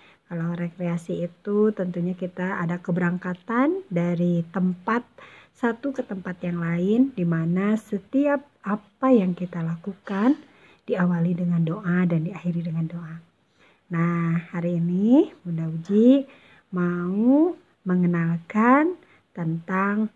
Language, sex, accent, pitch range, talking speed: Indonesian, female, native, 175-240 Hz, 105 wpm